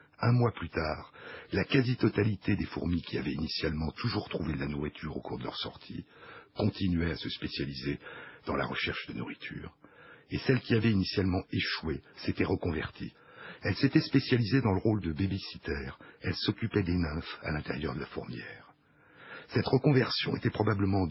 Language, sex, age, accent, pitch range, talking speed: French, male, 60-79, French, 85-120 Hz, 170 wpm